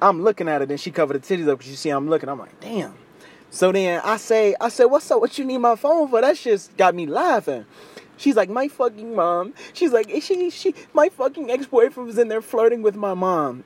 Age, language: 20-39, English